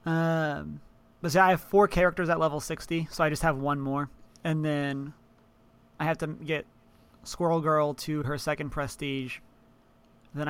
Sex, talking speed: male, 165 wpm